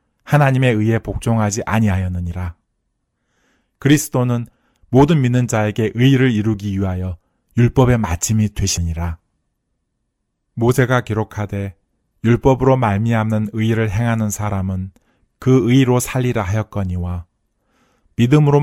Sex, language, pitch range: male, Korean, 100-125 Hz